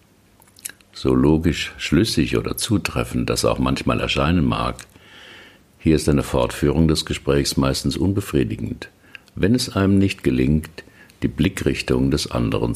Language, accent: German, German